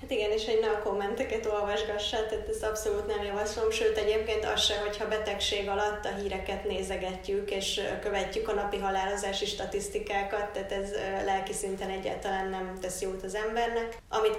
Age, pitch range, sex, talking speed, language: 20-39, 195-215 Hz, female, 165 wpm, Hungarian